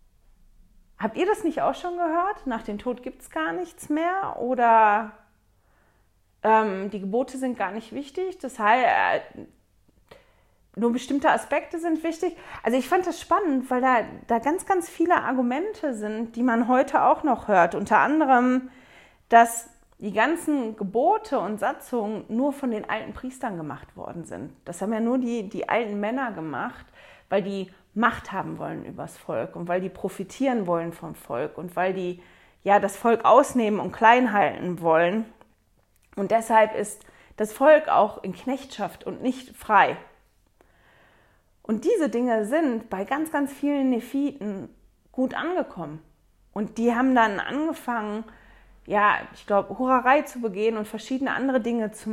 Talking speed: 160 wpm